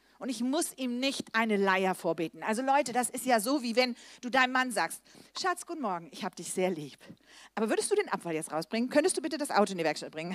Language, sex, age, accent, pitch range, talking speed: German, female, 40-59, German, 215-310 Hz, 255 wpm